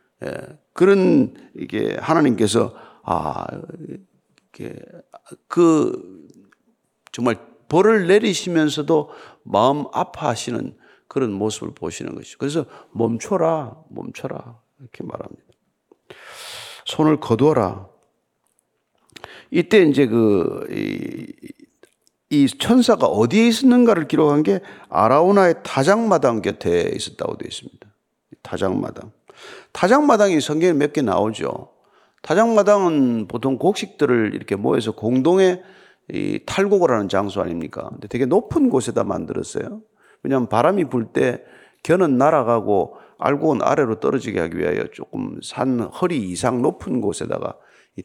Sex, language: male, Korean